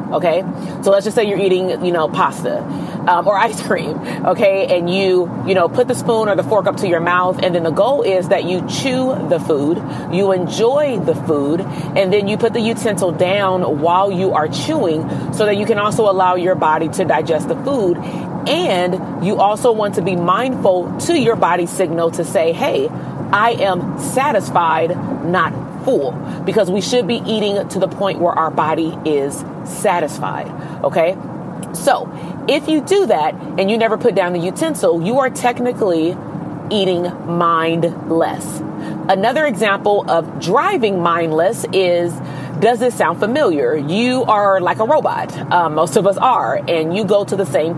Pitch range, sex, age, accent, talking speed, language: 165-210 Hz, female, 30-49, American, 180 wpm, English